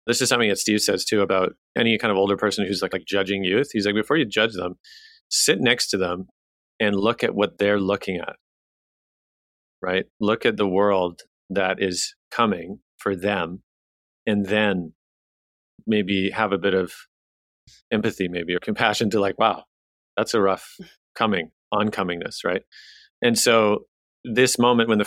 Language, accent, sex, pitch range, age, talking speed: English, American, male, 90-110 Hz, 40-59, 170 wpm